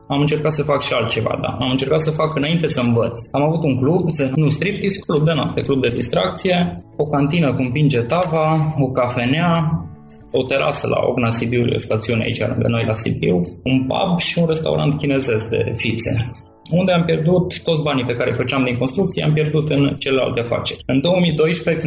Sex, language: male, Romanian